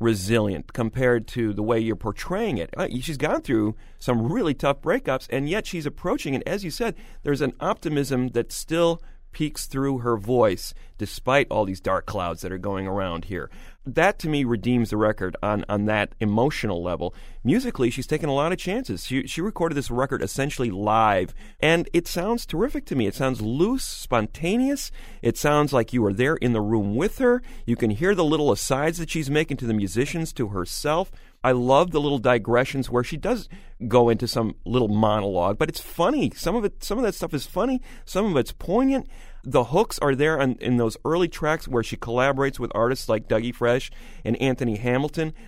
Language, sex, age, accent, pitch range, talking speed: English, male, 40-59, American, 115-155 Hz, 200 wpm